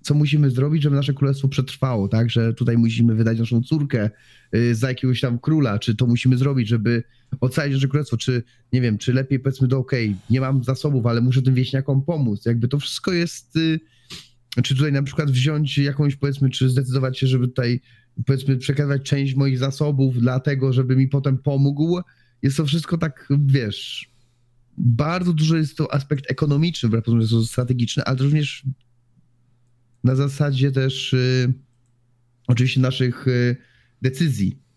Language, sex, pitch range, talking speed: Polish, male, 120-140 Hz, 155 wpm